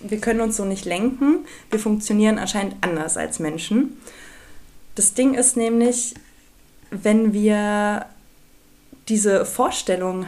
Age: 20-39